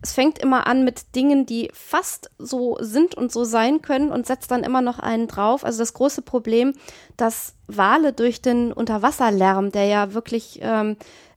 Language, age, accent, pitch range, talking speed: German, 20-39, German, 205-240 Hz, 180 wpm